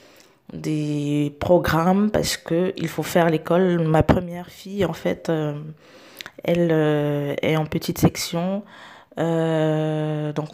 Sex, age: female, 20-39